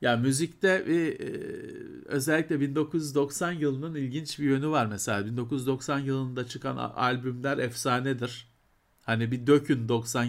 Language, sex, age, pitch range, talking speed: Turkish, male, 50-69, 115-155 Hz, 115 wpm